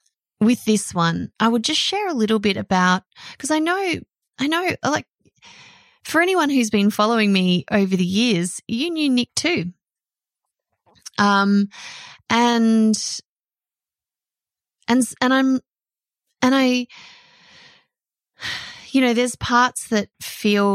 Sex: female